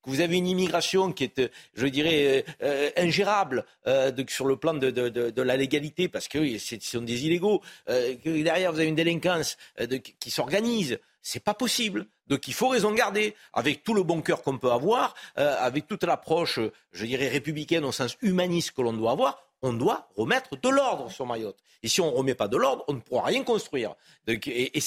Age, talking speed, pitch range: 50-69, 205 wpm, 140-185 Hz